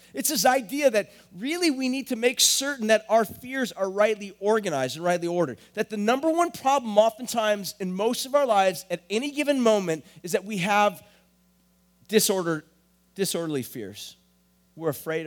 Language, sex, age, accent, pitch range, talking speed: English, male, 30-49, American, 160-225 Hz, 170 wpm